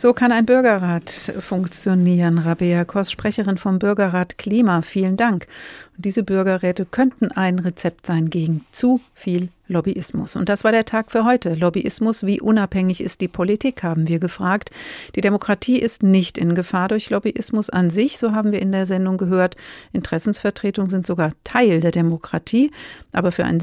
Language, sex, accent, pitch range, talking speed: German, female, German, 175-225 Hz, 165 wpm